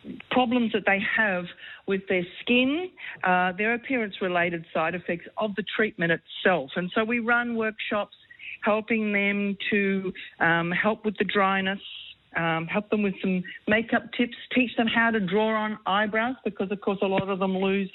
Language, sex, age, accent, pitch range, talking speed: English, female, 50-69, Australian, 185-220 Hz, 175 wpm